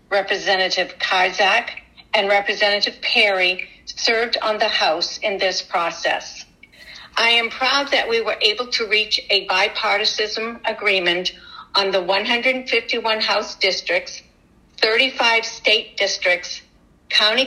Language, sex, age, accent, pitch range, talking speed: English, female, 60-79, American, 195-240 Hz, 115 wpm